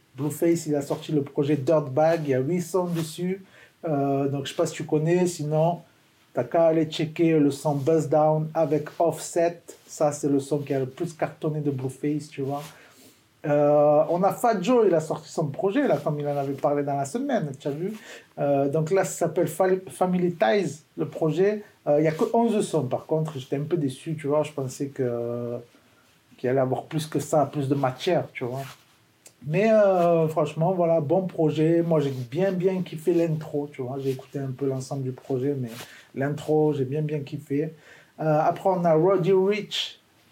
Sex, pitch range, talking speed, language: male, 140-175 Hz, 225 wpm, French